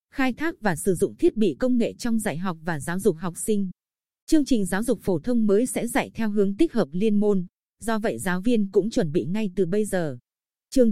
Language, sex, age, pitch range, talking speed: Vietnamese, female, 20-39, 190-240 Hz, 240 wpm